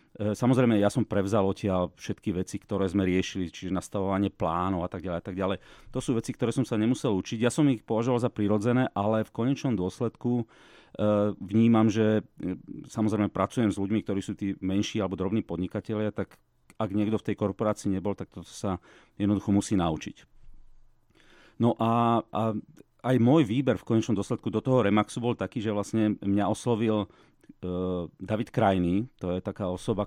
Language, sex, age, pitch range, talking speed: English, male, 40-59, 95-110 Hz, 175 wpm